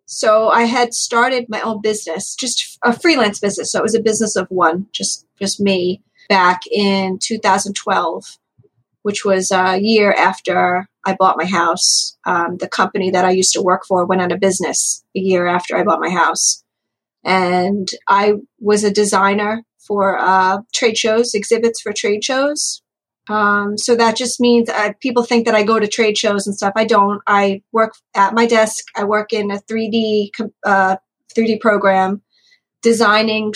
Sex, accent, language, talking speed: female, American, English, 175 wpm